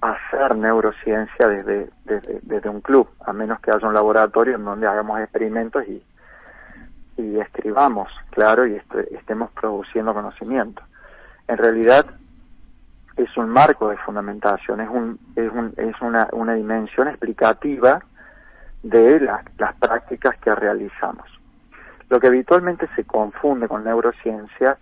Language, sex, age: Spanish, male, 40-59